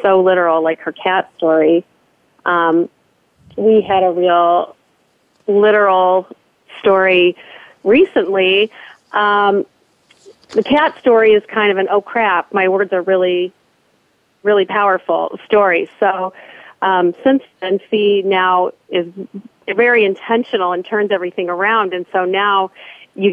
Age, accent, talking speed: 40-59, American, 125 wpm